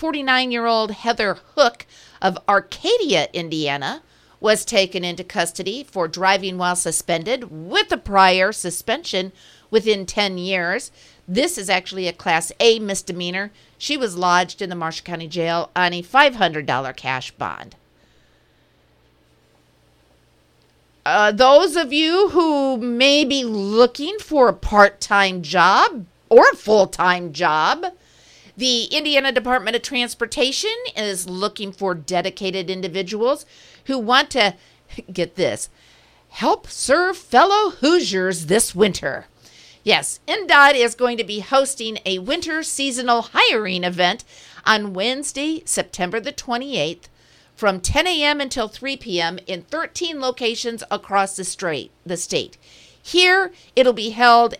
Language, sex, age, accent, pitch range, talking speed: English, female, 50-69, American, 180-270 Hz, 125 wpm